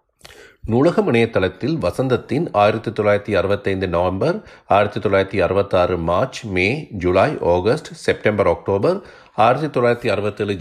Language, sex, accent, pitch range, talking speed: Tamil, male, native, 95-115 Hz, 105 wpm